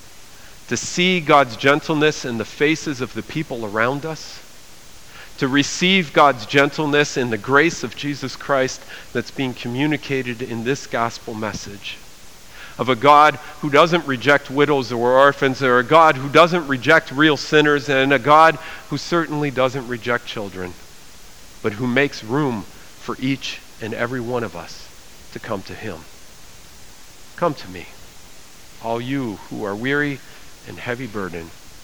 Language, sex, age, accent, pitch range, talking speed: English, male, 50-69, American, 100-145 Hz, 155 wpm